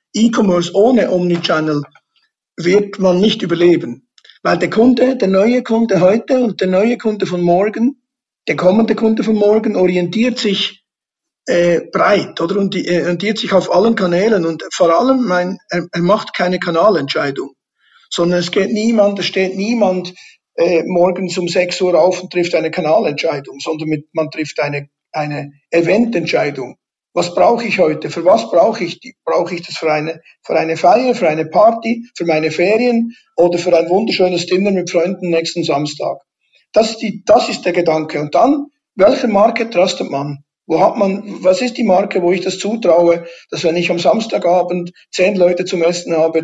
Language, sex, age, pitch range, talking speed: German, male, 50-69, 170-215 Hz, 175 wpm